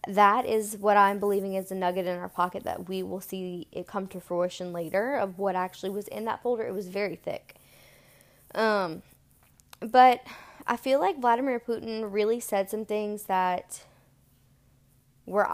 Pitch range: 180-220 Hz